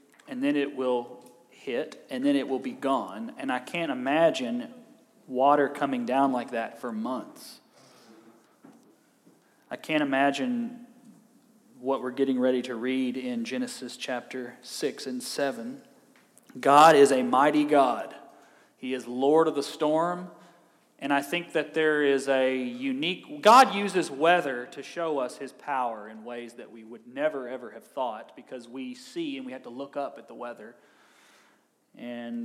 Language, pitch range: Russian, 130-205 Hz